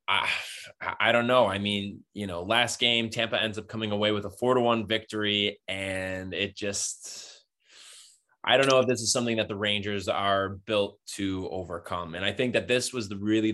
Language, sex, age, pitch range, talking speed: English, male, 20-39, 95-115 Hz, 205 wpm